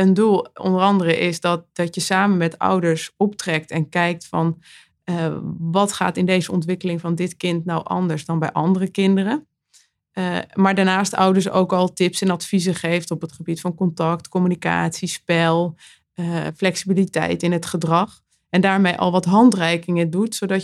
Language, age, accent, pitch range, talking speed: Dutch, 20-39, Dutch, 165-190 Hz, 170 wpm